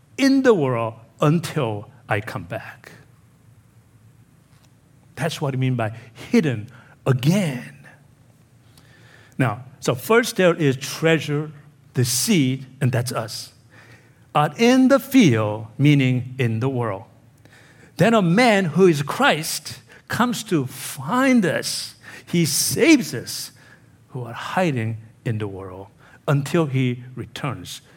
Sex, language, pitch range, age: male, English, 120-150 Hz, 60-79